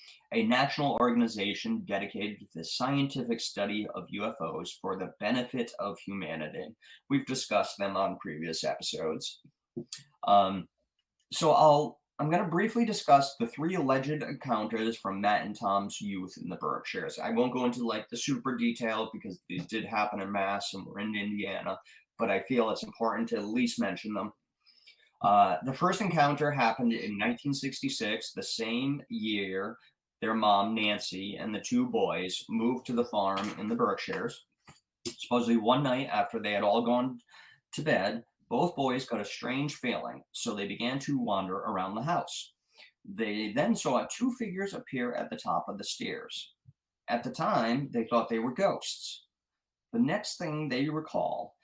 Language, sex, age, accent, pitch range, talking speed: English, male, 20-39, American, 105-150 Hz, 165 wpm